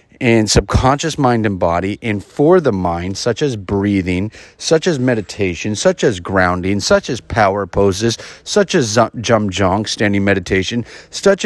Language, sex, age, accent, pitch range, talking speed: English, male, 30-49, American, 105-145 Hz, 150 wpm